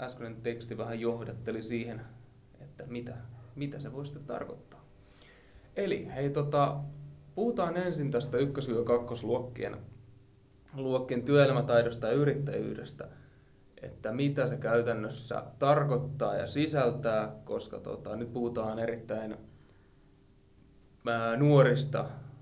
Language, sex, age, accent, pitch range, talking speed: Finnish, male, 20-39, native, 115-140 Hz, 100 wpm